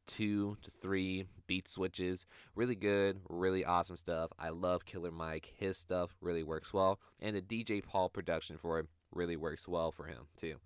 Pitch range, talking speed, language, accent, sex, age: 85-100 Hz, 180 wpm, English, American, male, 20-39